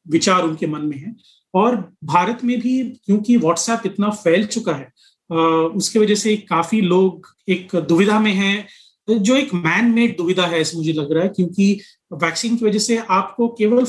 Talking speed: 185 wpm